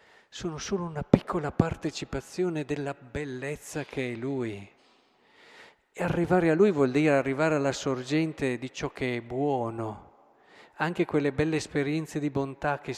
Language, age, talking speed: Italian, 50-69, 145 wpm